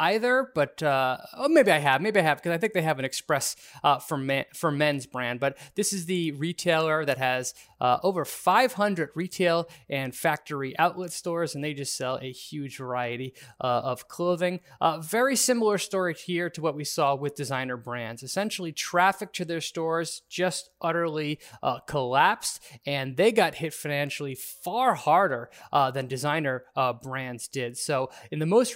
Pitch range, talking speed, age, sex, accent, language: 135-180 Hz, 180 wpm, 20-39, male, American, English